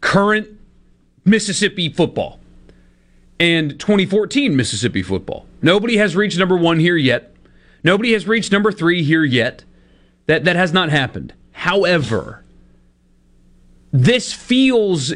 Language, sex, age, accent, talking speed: English, male, 40-59, American, 115 wpm